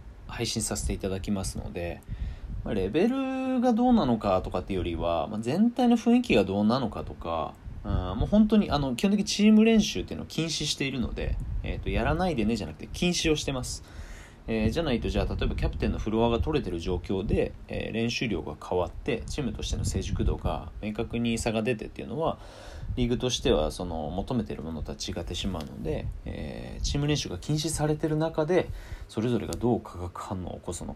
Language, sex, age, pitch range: Japanese, male, 30-49, 90-120 Hz